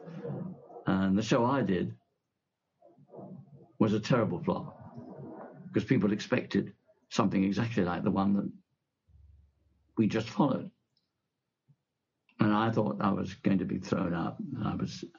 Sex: male